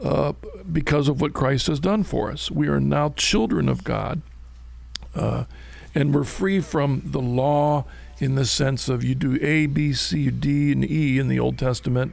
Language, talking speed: English, 190 wpm